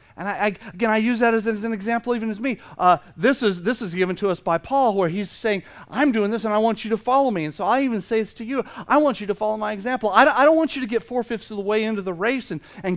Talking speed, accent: 315 wpm, American